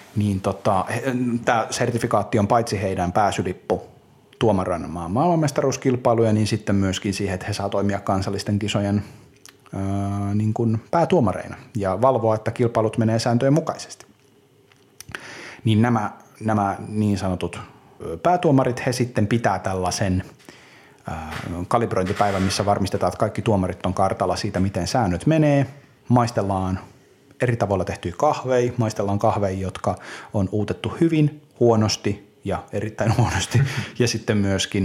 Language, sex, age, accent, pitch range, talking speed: Finnish, male, 30-49, native, 95-120 Hz, 120 wpm